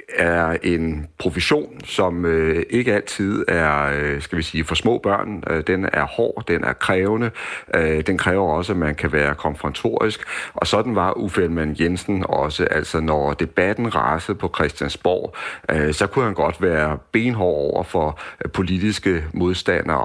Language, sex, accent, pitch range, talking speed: Danish, male, native, 80-100 Hz, 145 wpm